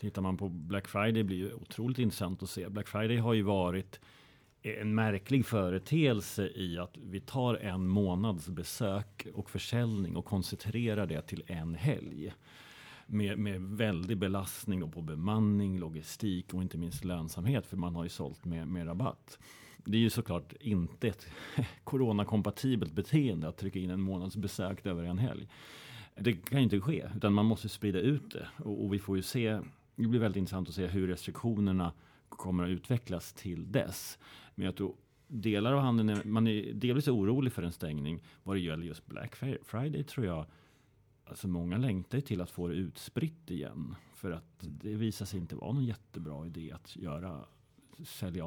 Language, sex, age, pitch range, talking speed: English, male, 40-59, 90-115 Hz, 175 wpm